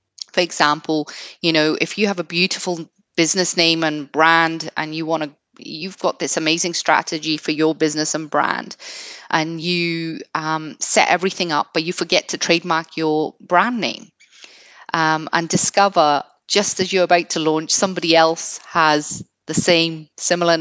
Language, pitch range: English, 155-185 Hz